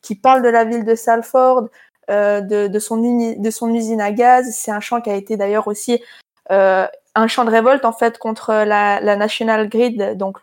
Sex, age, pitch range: female, 20-39, 205-240 Hz